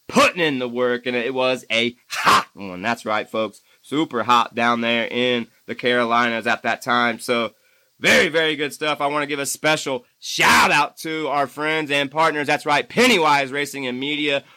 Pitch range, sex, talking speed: 125-155 Hz, male, 195 wpm